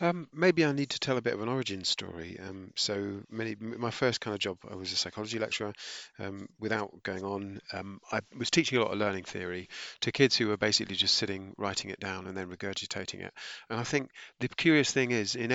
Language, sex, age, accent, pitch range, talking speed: English, male, 40-59, British, 95-120 Hz, 230 wpm